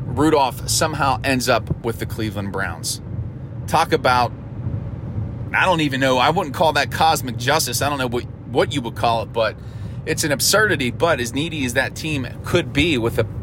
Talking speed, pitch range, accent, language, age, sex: 190 wpm, 115-145 Hz, American, English, 30-49, male